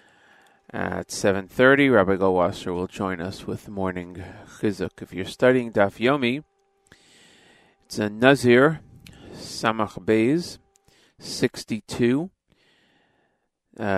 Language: English